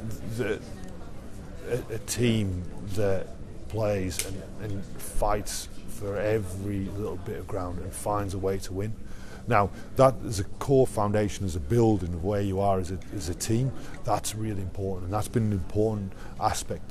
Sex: male